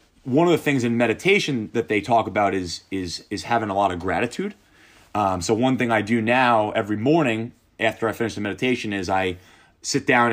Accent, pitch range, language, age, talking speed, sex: American, 105-145 Hz, English, 30-49, 210 wpm, male